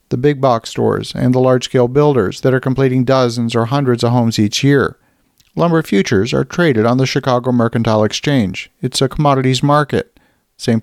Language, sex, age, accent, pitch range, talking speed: English, male, 50-69, American, 115-145 Hz, 175 wpm